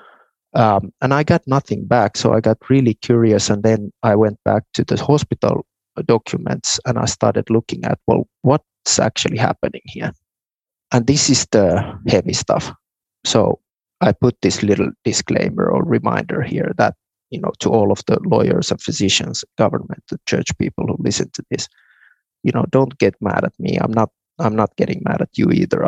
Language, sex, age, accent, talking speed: English, male, 30-49, Finnish, 185 wpm